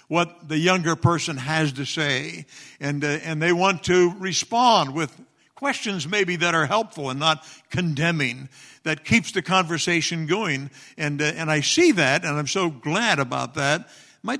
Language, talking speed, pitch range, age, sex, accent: English, 170 wpm, 130-170 Hz, 60-79, male, American